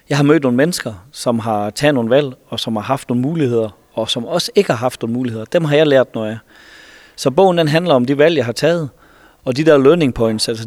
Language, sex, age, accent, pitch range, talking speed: Danish, male, 30-49, native, 115-145 Hz, 260 wpm